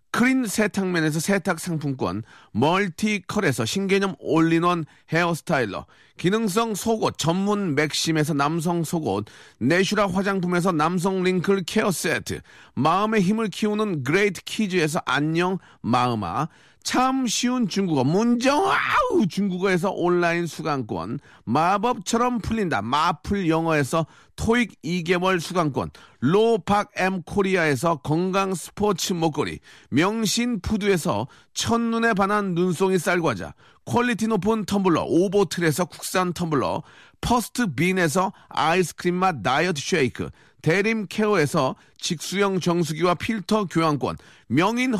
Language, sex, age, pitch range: Korean, male, 40-59, 160-215 Hz